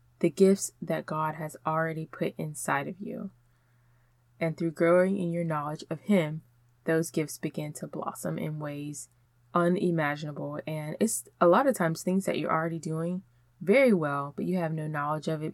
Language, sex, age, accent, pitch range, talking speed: English, female, 20-39, American, 145-180 Hz, 180 wpm